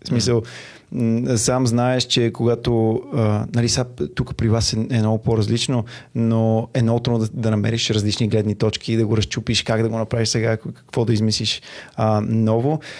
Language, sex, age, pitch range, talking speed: Bulgarian, male, 30-49, 110-130 Hz, 155 wpm